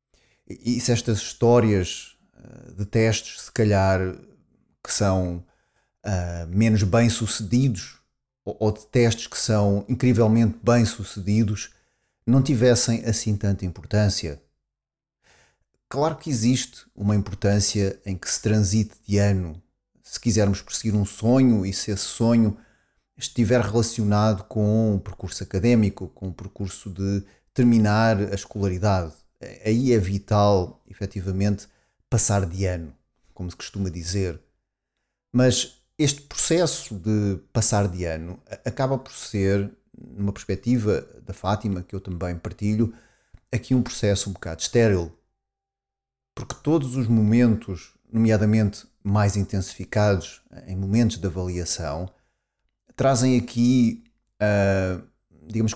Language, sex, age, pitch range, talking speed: Portuguese, male, 30-49, 95-120 Hz, 115 wpm